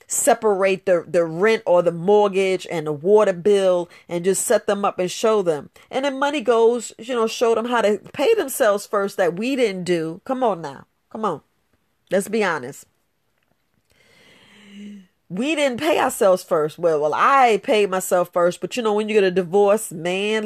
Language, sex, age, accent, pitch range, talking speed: English, female, 40-59, American, 185-245 Hz, 190 wpm